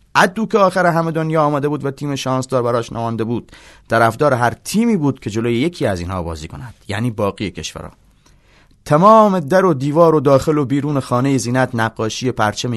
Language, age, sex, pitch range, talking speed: Persian, 30-49, male, 110-135 Hz, 185 wpm